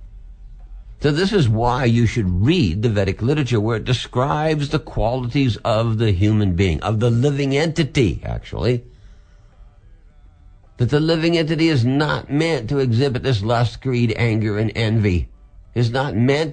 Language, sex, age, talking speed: English, male, 60-79, 155 wpm